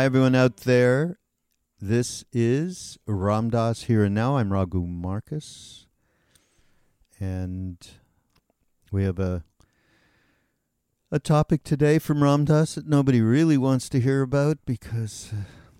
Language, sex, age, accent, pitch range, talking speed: English, male, 50-69, American, 95-125 Hz, 110 wpm